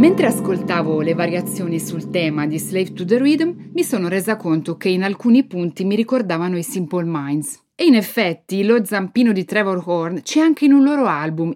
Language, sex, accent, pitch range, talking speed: Italian, female, native, 170-230 Hz, 195 wpm